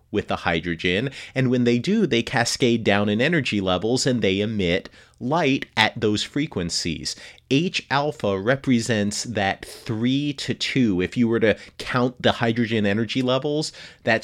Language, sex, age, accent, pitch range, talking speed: English, male, 30-49, American, 95-125 Hz, 150 wpm